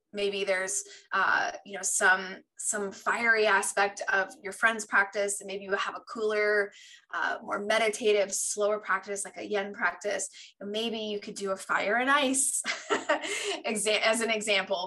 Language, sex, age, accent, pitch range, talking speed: English, female, 20-39, American, 200-235 Hz, 155 wpm